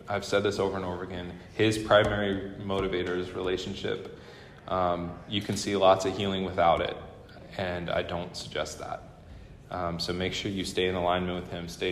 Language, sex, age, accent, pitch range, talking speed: English, male, 20-39, American, 95-115 Hz, 185 wpm